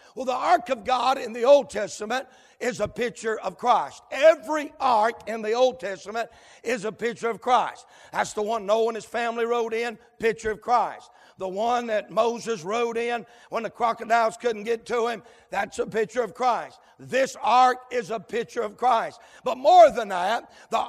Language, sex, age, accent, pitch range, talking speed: English, male, 60-79, American, 230-280 Hz, 190 wpm